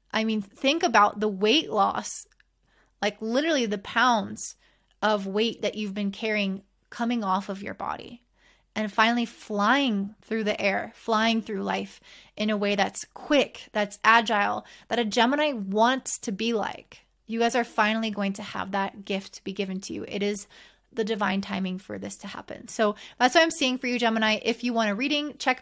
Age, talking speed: 20-39, 190 wpm